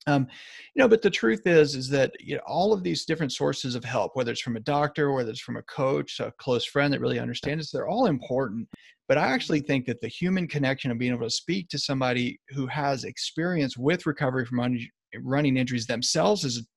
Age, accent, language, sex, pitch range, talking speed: 40-59, American, English, male, 125-155 Hz, 230 wpm